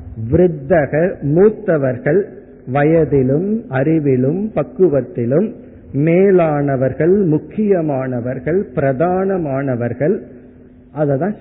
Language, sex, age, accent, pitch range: Tamil, male, 50-69, native, 135-185 Hz